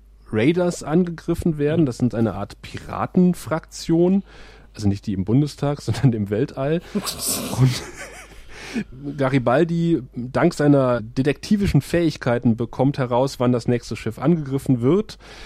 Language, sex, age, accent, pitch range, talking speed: German, male, 30-49, German, 115-155 Hz, 115 wpm